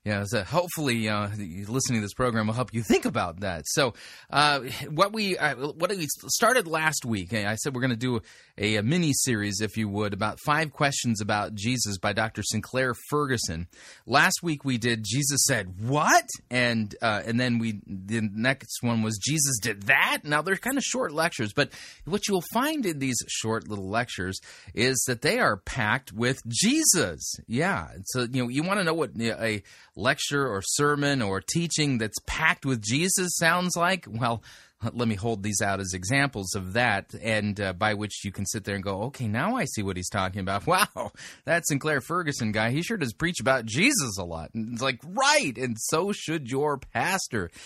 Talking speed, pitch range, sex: 205 wpm, 110-150 Hz, male